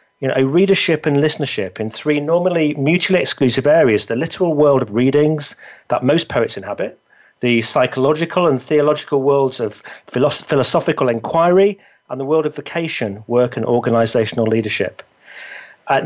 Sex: male